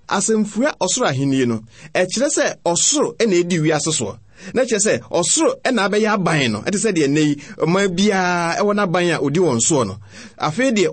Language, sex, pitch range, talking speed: Croatian, male, 155-235 Hz, 160 wpm